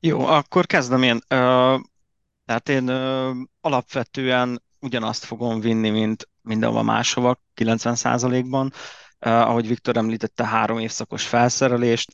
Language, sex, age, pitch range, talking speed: Hungarian, male, 30-49, 110-125 Hz, 105 wpm